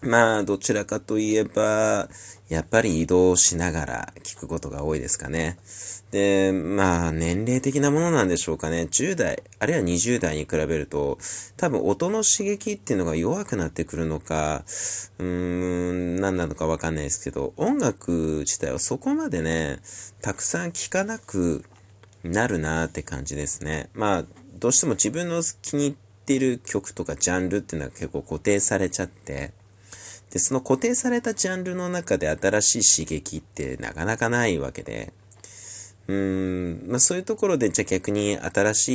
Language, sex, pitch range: Japanese, male, 85-115 Hz